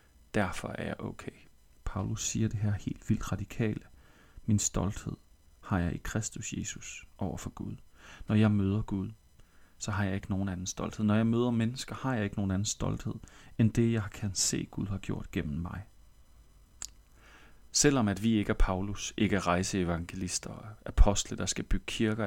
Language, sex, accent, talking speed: Danish, male, native, 180 wpm